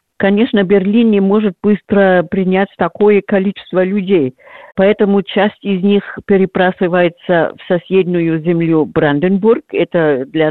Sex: female